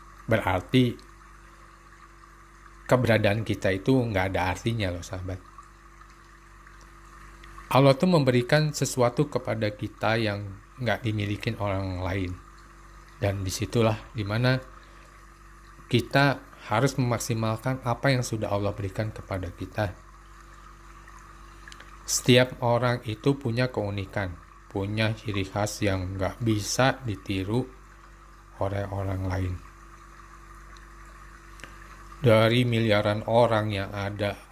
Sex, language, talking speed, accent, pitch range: male, Indonesian, 90 wpm, native, 100-125 Hz